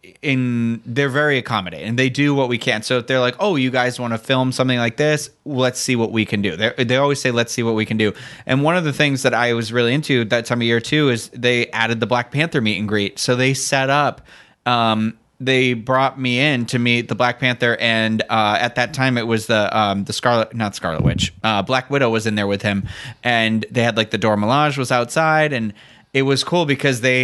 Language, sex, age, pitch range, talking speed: English, male, 30-49, 115-135 Hz, 250 wpm